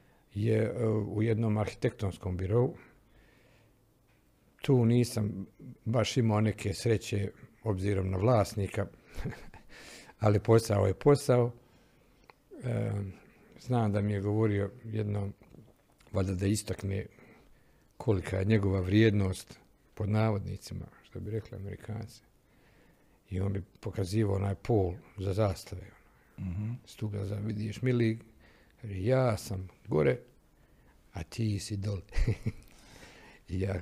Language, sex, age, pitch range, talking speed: Croatian, male, 60-79, 100-125 Hz, 100 wpm